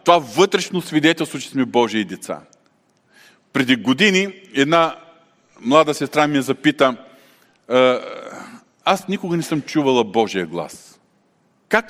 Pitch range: 140-200 Hz